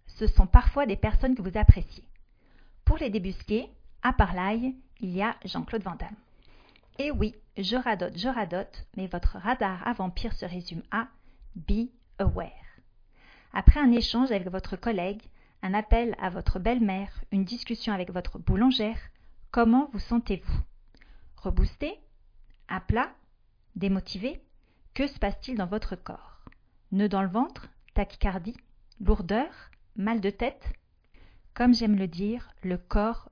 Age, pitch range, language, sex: 40-59, 195-240 Hz, French, female